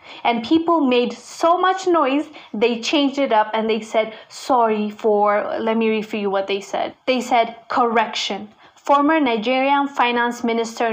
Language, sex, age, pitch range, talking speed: English, female, 20-39, 220-270 Hz, 165 wpm